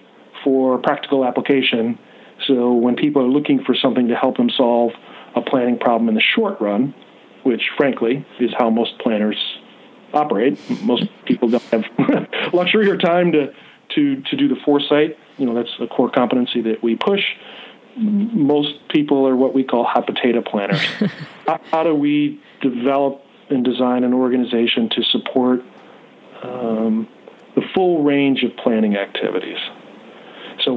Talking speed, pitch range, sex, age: 150 wpm, 125-155 Hz, male, 40-59